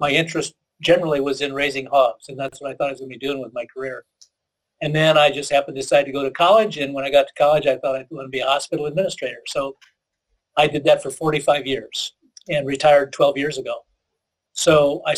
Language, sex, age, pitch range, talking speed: English, male, 50-69, 135-155 Hz, 245 wpm